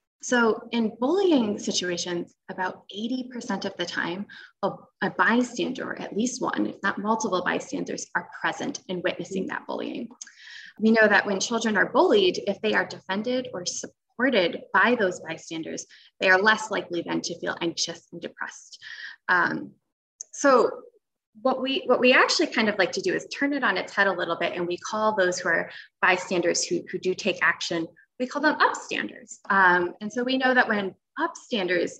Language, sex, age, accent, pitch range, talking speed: English, female, 20-39, American, 185-245 Hz, 180 wpm